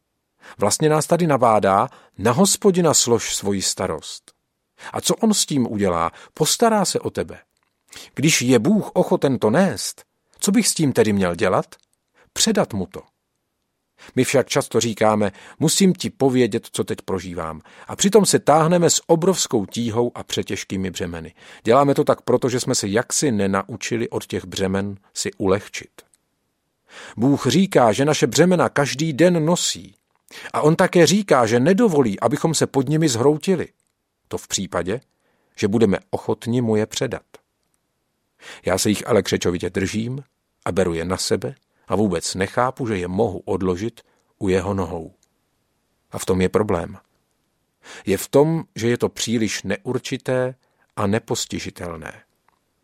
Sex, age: male, 40-59